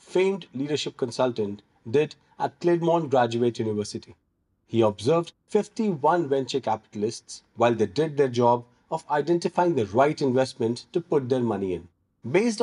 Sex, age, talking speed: male, 40-59, 140 wpm